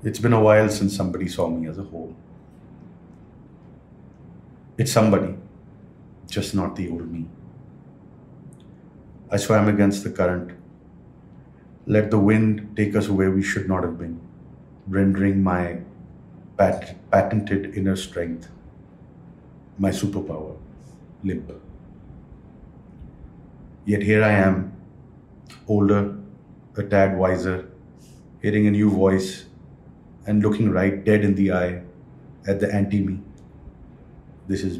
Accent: Indian